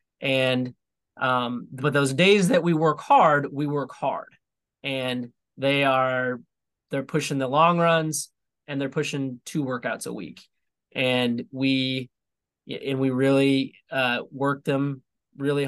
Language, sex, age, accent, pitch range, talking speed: English, male, 20-39, American, 125-145 Hz, 140 wpm